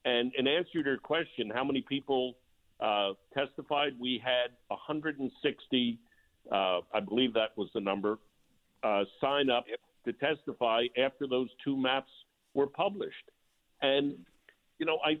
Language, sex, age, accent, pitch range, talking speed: English, male, 50-69, American, 115-145 Hz, 140 wpm